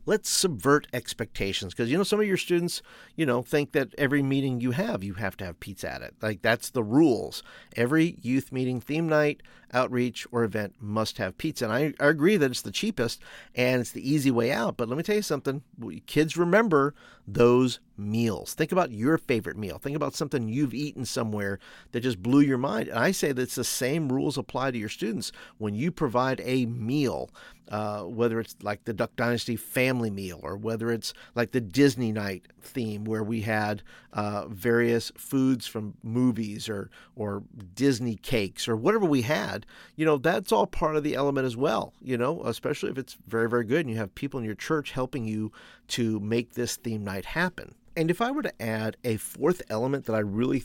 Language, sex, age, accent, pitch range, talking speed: English, male, 50-69, American, 110-140 Hz, 205 wpm